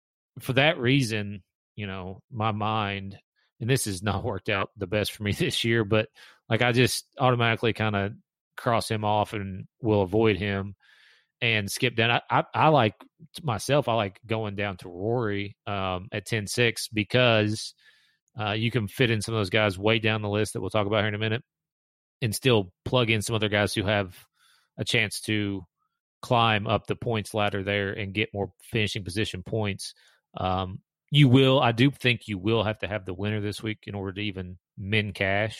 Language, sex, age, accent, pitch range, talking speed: English, male, 30-49, American, 100-115 Hz, 195 wpm